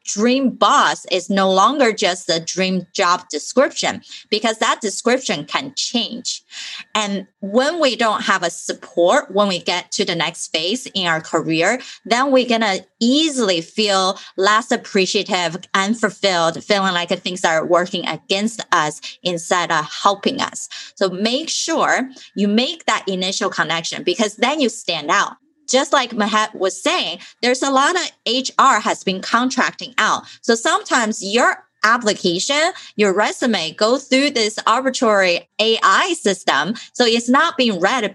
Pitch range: 190-255 Hz